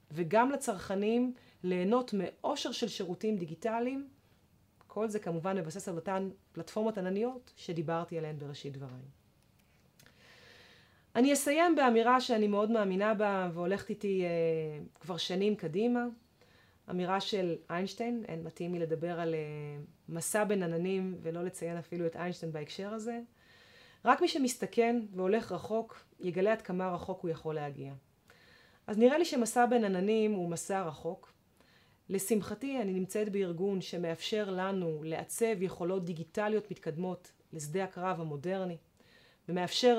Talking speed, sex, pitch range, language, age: 130 wpm, female, 165-215 Hz, Hebrew, 30-49